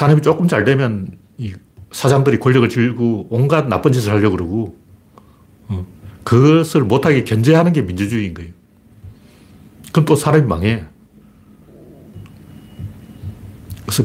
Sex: male